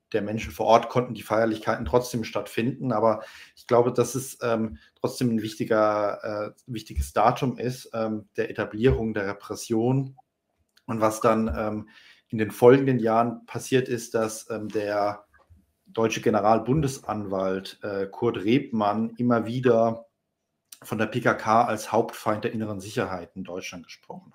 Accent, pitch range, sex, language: German, 105-120 Hz, male, German